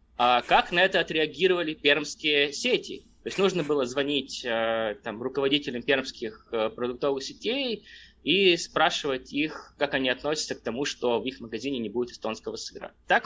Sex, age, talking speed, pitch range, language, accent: male, 20-39, 145 wpm, 125-170 Hz, Russian, native